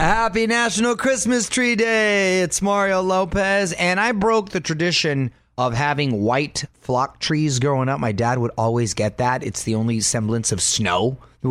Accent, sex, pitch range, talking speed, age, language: American, male, 120-185 Hz, 170 wpm, 30-49, English